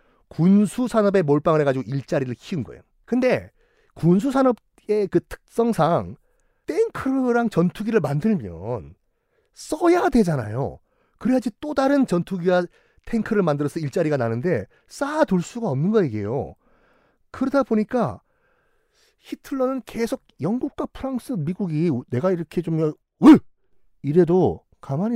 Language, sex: Korean, male